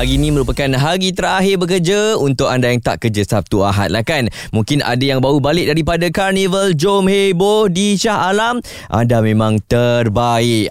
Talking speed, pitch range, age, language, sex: 170 wpm, 110-170 Hz, 20-39, Malay, male